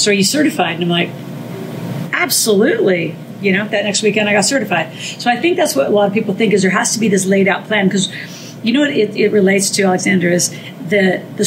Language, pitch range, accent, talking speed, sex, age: English, 180-205 Hz, American, 245 wpm, female, 40-59